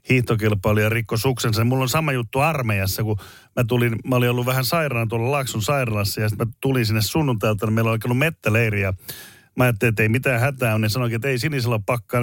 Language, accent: Finnish, native